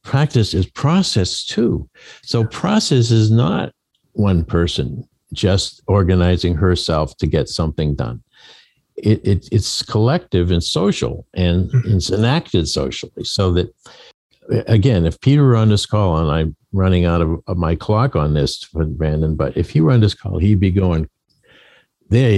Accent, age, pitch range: American, 60-79, 90-115 Hz